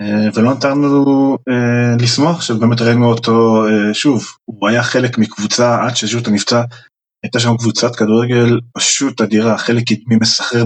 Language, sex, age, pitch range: Hebrew, male, 20-39, 105-125 Hz